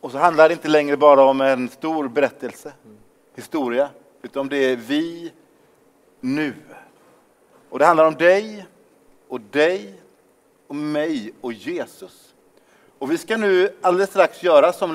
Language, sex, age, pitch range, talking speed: Swedish, male, 30-49, 140-190 Hz, 150 wpm